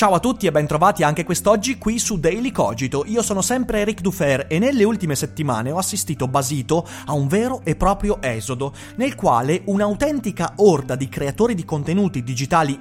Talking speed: 180 wpm